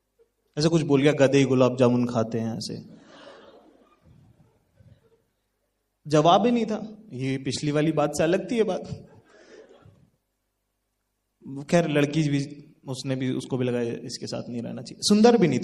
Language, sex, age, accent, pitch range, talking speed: English, male, 30-49, Indian, 140-205 Hz, 155 wpm